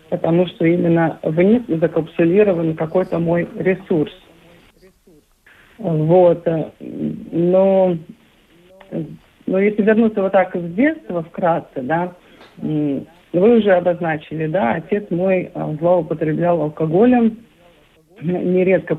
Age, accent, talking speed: 50-69, native, 90 wpm